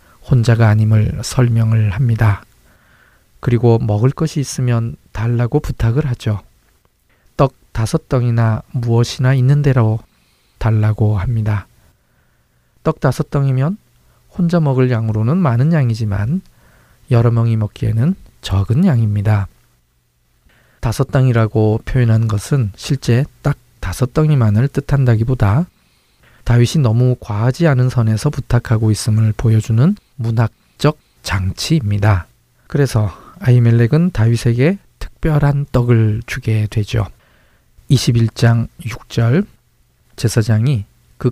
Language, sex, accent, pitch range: Korean, male, native, 110-135 Hz